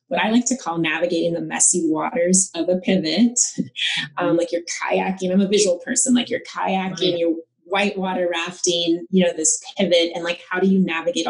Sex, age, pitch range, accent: female, 30-49, 165-235 Hz, American